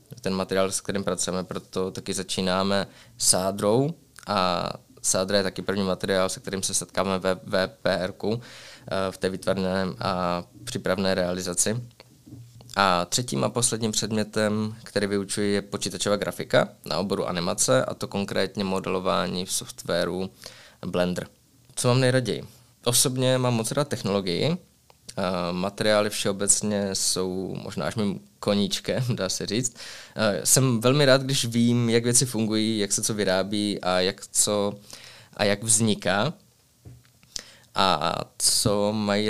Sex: male